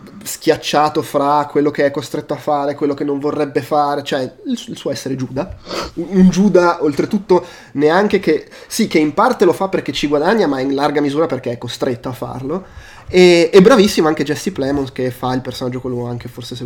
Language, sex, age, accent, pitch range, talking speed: Italian, male, 20-39, native, 130-160 Hz, 195 wpm